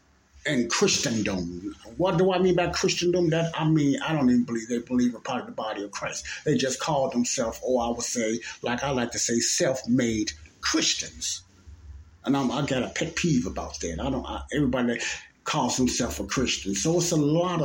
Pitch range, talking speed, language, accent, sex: 95-155 Hz, 205 wpm, English, American, male